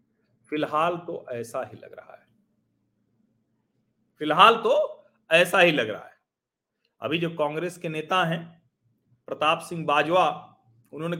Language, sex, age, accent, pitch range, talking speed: Hindi, male, 40-59, native, 135-170 Hz, 130 wpm